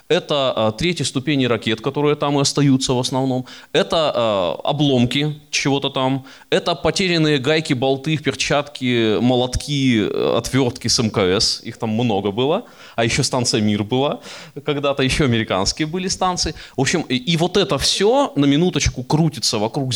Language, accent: Russian, native